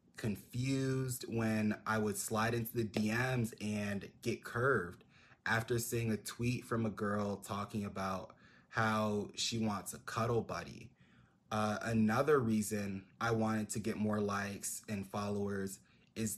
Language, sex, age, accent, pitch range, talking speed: English, male, 20-39, American, 105-115 Hz, 140 wpm